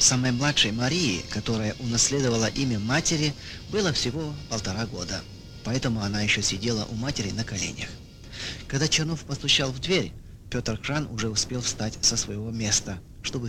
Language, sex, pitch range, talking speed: English, male, 105-140 Hz, 145 wpm